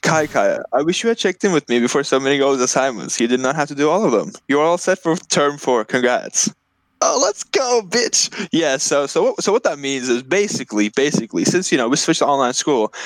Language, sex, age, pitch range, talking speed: English, male, 10-29, 125-185 Hz, 250 wpm